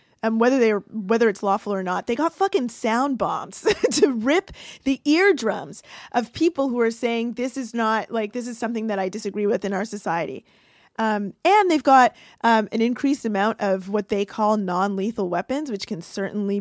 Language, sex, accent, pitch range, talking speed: English, female, American, 215-275 Hz, 190 wpm